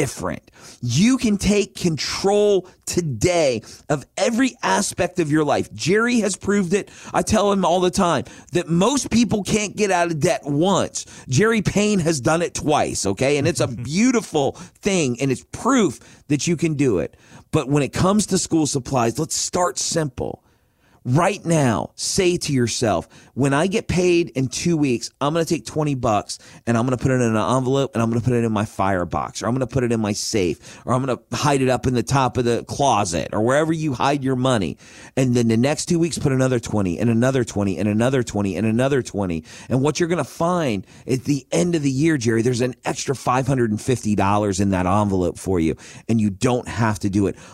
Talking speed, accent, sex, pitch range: 220 wpm, American, male, 115-170 Hz